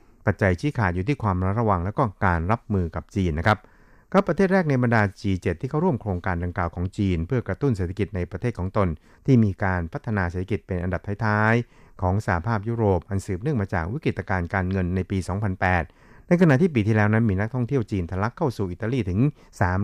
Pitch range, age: 90-115 Hz, 60-79